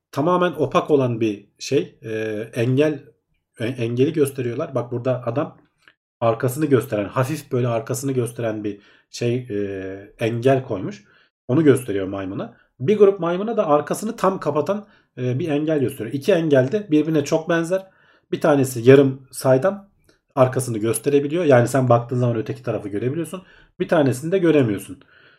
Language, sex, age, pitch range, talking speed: Turkish, male, 40-59, 115-155 Hz, 145 wpm